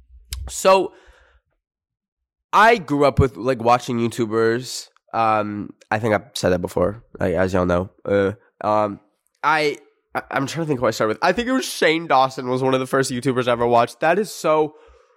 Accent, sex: American, male